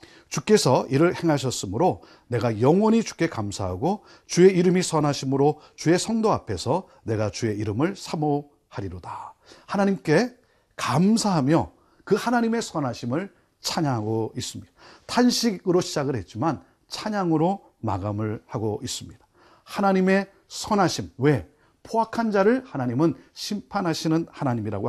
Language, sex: Korean, male